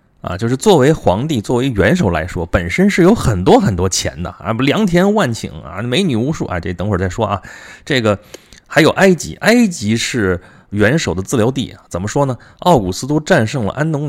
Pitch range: 95-130 Hz